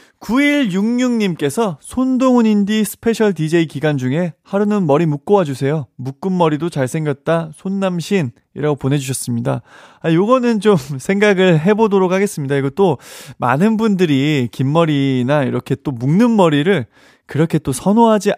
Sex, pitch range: male, 140-195 Hz